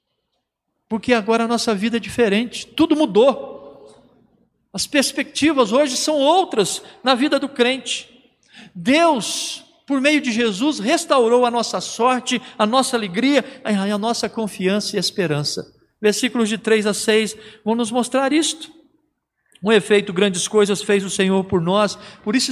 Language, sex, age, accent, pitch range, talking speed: Portuguese, male, 50-69, Brazilian, 210-285 Hz, 145 wpm